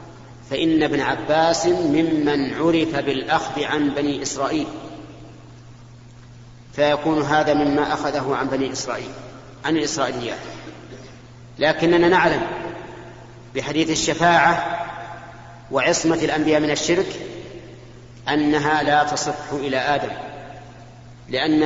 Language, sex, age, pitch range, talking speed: Arabic, male, 40-59, 125-155 Hz, 90 wpm